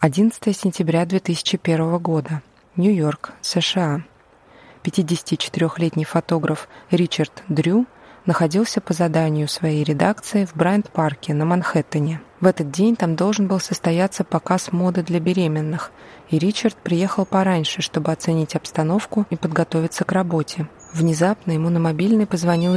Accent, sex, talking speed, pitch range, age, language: native, female, 120 wpm, 160-185 Hz, 20-39, Russian